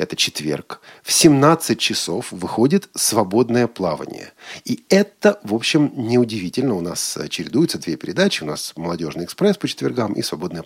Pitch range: 110-155 Hz